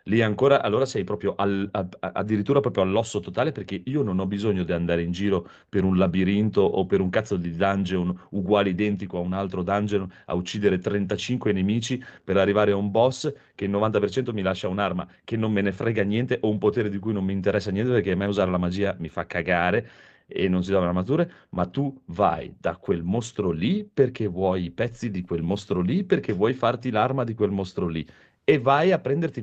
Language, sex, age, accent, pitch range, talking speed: Italian, male, 30-49, native, 100-120 Hz, 220 wpm